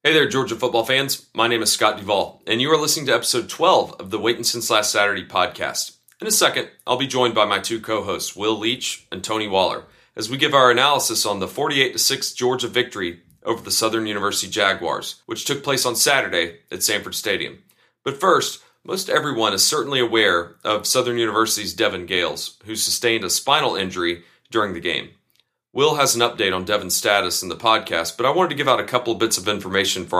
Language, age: English, 30-49